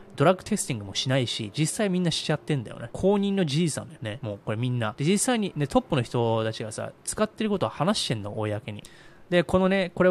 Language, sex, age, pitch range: Japanese, male, 20-39, 115-165 Hz